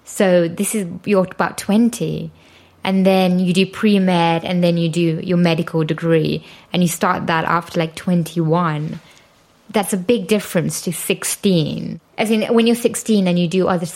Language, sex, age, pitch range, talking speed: English, female, 20-39, 165-200 Hz, 170 wpm